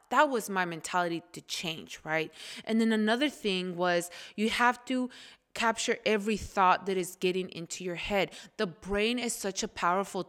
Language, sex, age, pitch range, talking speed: English, female, 20-39, 195-255 Hz, 175 wpm